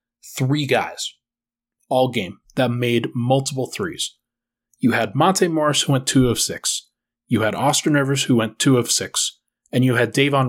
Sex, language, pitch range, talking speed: male, English, 120-160 Hz, 170 wpm